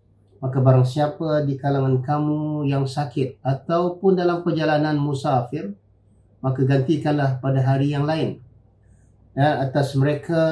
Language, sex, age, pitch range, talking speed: Malay, male, 50-69, 105-155 Hz, 115 wpm